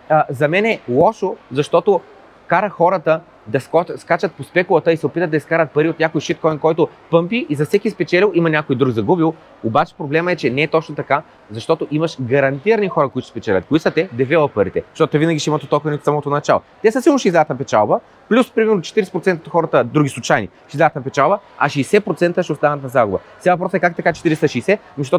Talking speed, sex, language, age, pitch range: 205 wpm, male, Bulgarian, 30-49, 140-170 Hz